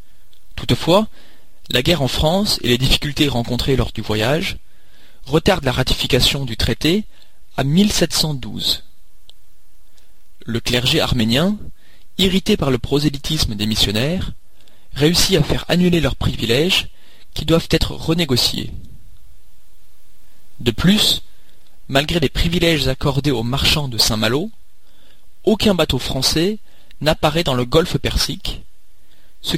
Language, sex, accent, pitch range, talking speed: French, male, French, 110-165 Hz, 115 wpm